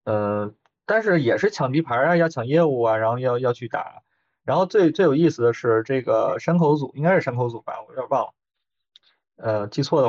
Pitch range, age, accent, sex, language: 110-145 Hz, 20-39, native, male, Chinese